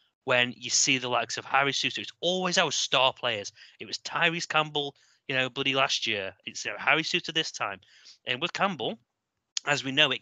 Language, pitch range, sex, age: English, 110-135 Hz, male, 20-39